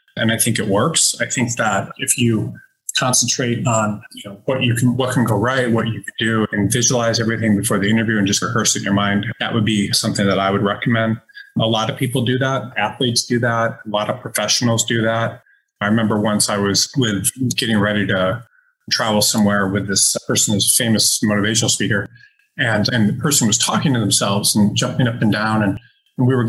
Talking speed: 215 wpm